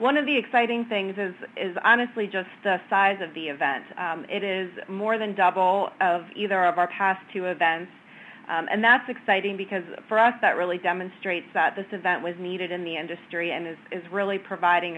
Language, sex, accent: English, female, American